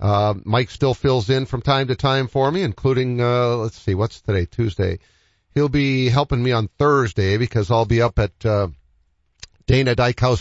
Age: 50-69